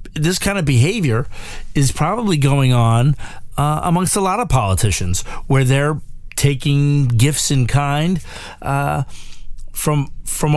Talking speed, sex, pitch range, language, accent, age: 130 wpm, male, 105-145 Hz, English, American, 40-59